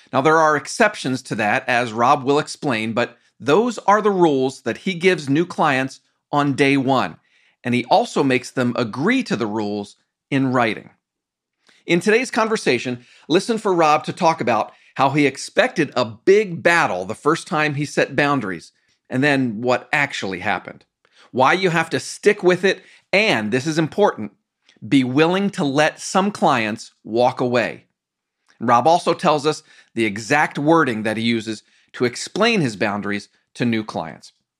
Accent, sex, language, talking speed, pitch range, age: American, male, English, 165 wpm, 125-175 Hz, 40-59